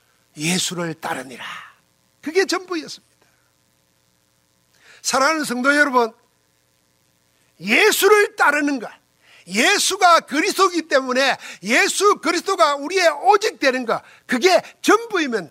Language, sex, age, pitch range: Korean, male, 50-69, 200-335 Hz